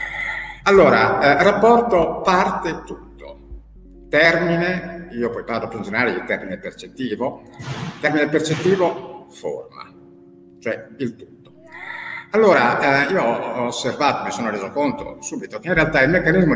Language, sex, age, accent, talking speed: Italian, male, 50-69, native, 125 wpm